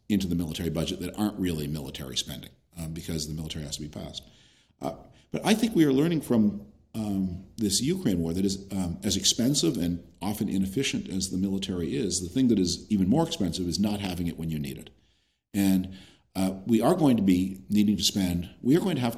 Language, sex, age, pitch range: English, male, 40-59, 85-110 Hz